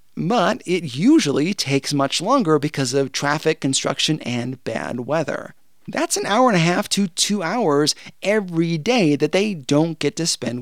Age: 30-49